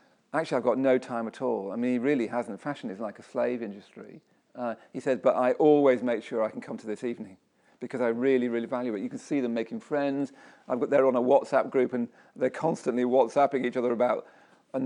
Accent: British